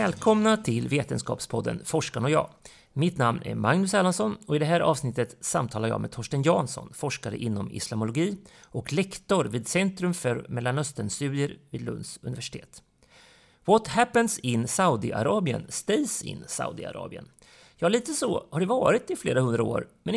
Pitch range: 130-185 Hz